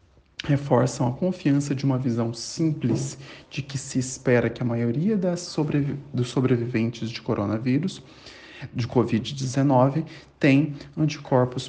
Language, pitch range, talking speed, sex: Portuguese, 120-145 Hz, 125 wpm, male